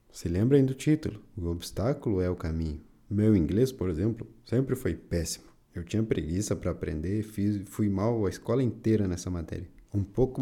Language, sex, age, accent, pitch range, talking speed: Portuguese, male, 20-39, Brazilian, 90-120 Hz, 180 wpm